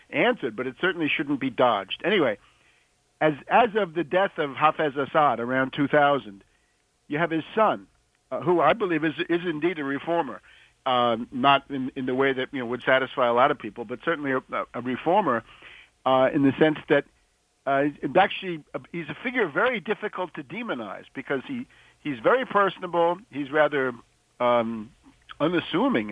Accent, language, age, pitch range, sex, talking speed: American, English, 60-79, 135-170 Hz, male, 170 wpm